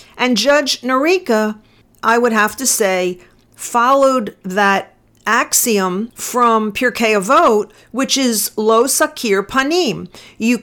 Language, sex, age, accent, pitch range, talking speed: English, female, 50-69, American, 195-260 Hz, 115 wpm